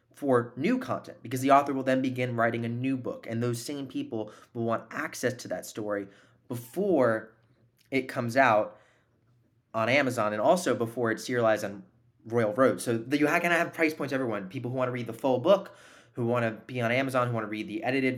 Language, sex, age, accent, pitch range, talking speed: English, male, 20-39, American, 110-130 Hz, 220 wpm